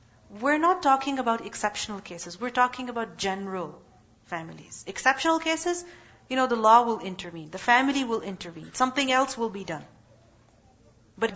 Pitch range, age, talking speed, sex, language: 175-265 Hz, 40-59, 155 wpm, female, English